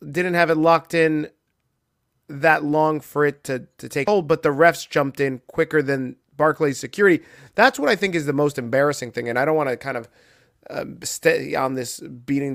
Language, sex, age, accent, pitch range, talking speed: English, male, 30-49, American, 130-170 Hz, 200 wpm